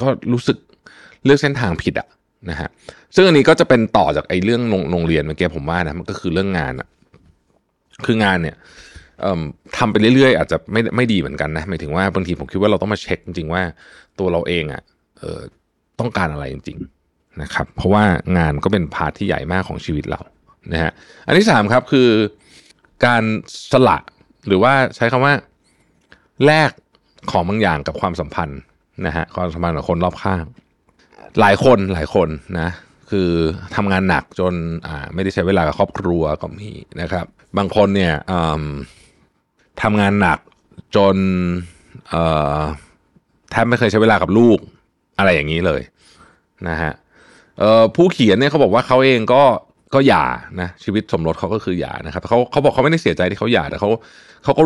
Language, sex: Thai, male